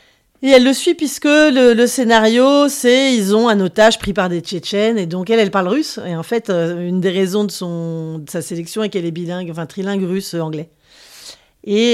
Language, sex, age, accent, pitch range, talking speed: French, female, 40-59, French, 175-220 Hz, 220 wpm